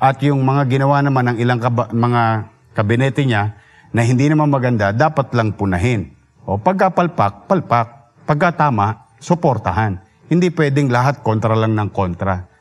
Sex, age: male, 50-69